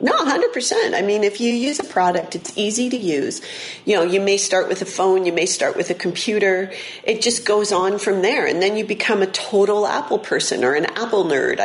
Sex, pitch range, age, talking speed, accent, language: female, 190-270 Hz, 40-59, 235 wpm, American, English